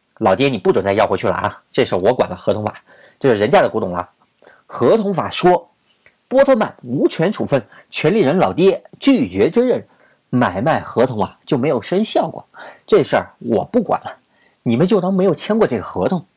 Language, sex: Chinese, male